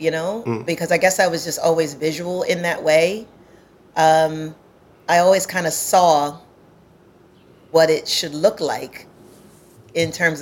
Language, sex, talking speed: English, female, 150 wpm